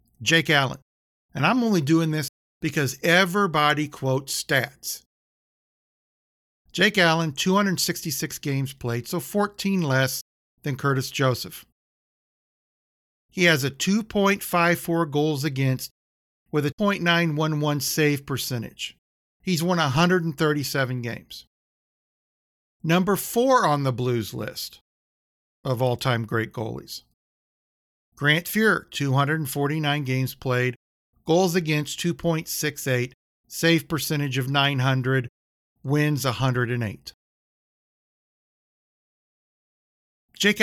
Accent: American